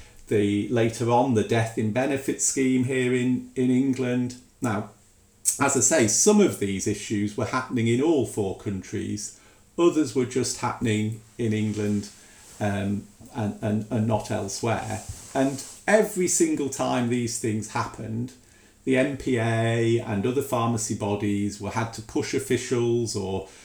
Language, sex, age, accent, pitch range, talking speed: English, male, 40-59, British, 105-130 Hz, 145 wpm